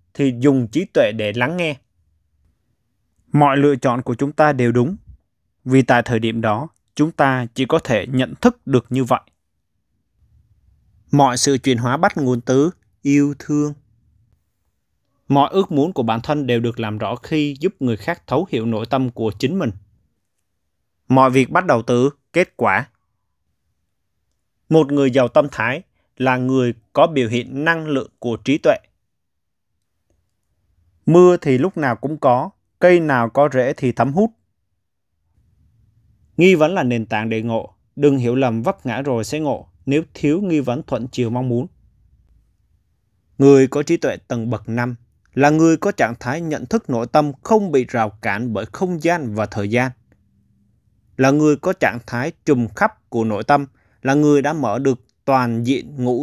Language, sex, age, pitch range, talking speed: Vietnamese, male, 20-39, 110-145 Hz, 175 wpm